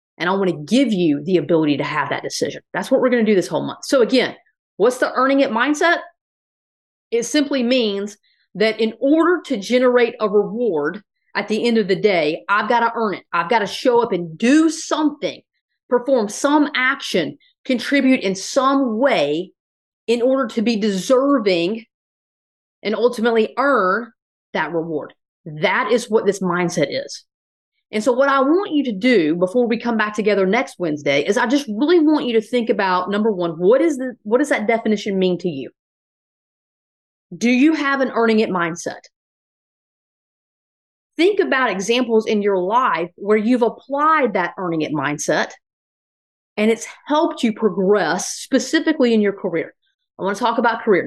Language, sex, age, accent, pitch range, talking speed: English, female, 30-49, American, 195-265 Hz, 175 wpm